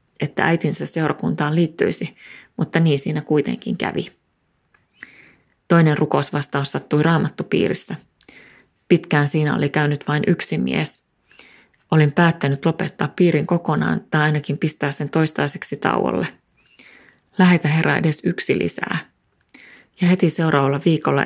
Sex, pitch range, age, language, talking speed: female, 145-165 Hz, 30-49, Finnish, 115 wpm